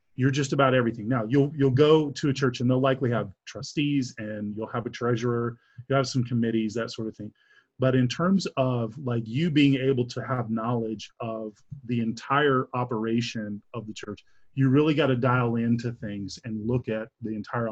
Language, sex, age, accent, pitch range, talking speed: English, male, 30-49, American, 115-135 Hz, 200 wpm